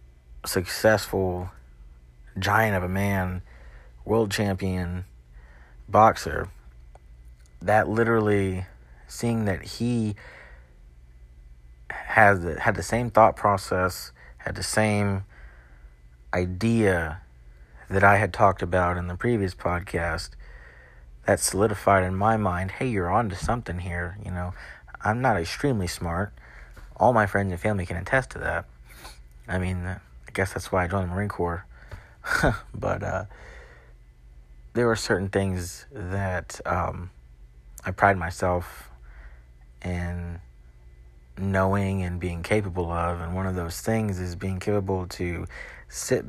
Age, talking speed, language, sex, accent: 40-59, 125 wpm, English, male, American